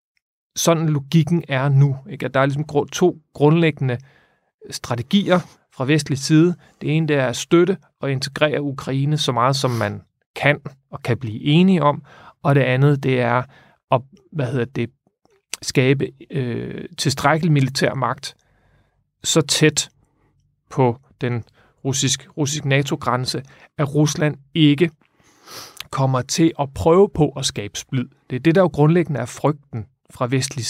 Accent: native